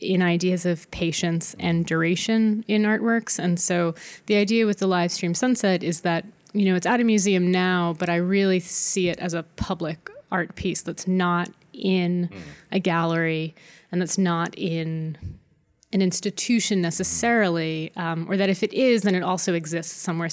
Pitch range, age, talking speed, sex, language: 170-200 Hz, 20-39, 175 wpm, female, English